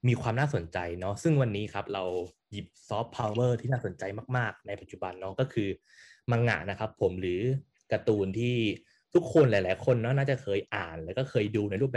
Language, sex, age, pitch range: Thai, male, 20-39, 100-130 Hz